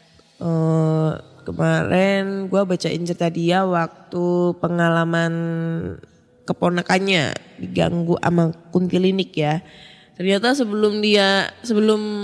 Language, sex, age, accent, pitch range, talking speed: Indonesian, female, 10-29, native, 170-230 Hz, 90 wpm